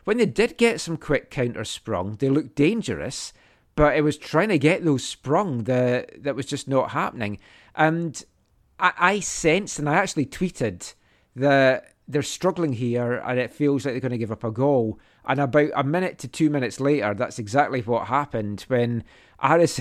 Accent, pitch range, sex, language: British, 115-150 Hz, male, English